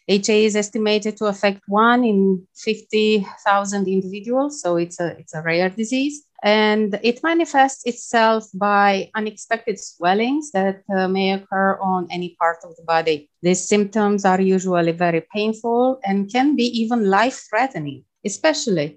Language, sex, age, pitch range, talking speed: English, female, 30-49, 170-215 Hz, 140 wpm